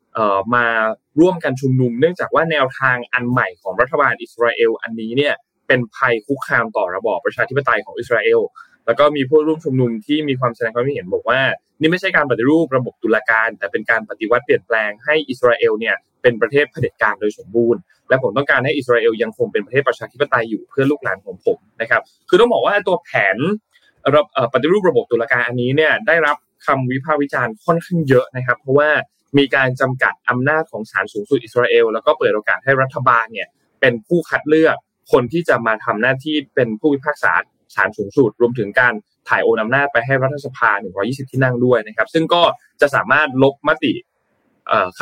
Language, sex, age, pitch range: Thai, male, 20-39, 120-160 Hz